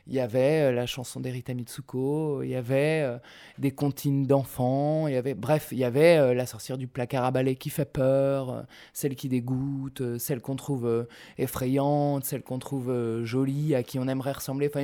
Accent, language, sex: French, French, male